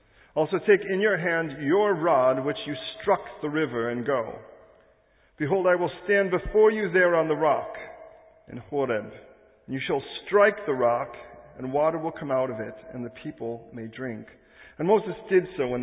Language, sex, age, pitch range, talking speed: English, male, 40-59, 120-155 Hz, 180 wpm